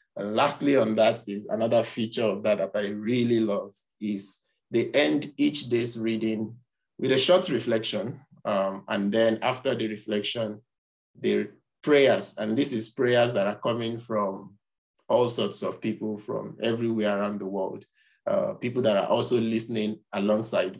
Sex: male